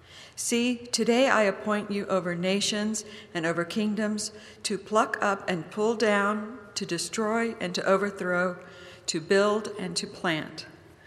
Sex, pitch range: female, 175-215 Hz